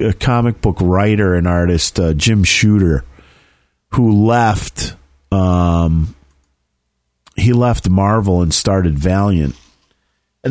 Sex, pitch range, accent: male, 80-105 Hz, American